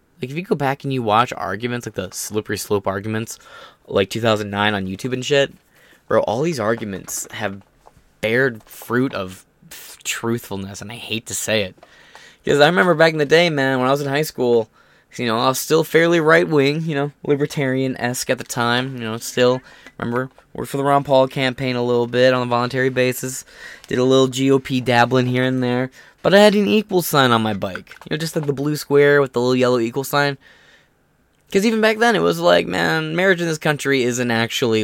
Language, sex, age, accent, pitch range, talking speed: English, male, 20-39, American, 110-140 Hz, 210 wpm